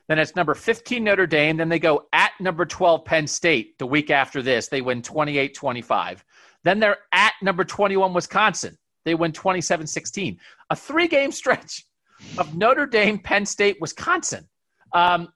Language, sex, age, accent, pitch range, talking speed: English, male, 40-59, American, 135-185 Hz, 155 wpm